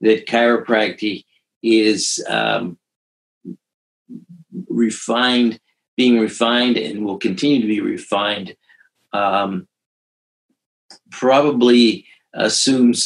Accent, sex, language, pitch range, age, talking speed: American, male, English, 100-120 Hz, 50-69, 75 wpm